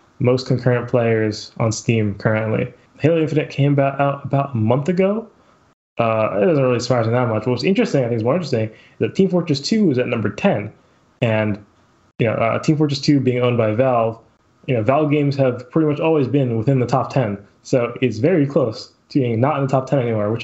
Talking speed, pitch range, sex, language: 225 wpm, 110-145 Hz, male, English